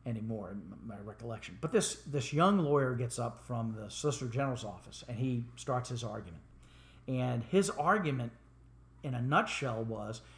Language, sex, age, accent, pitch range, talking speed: English, male, 50-69, American, 120-155 Hz, 160 wpm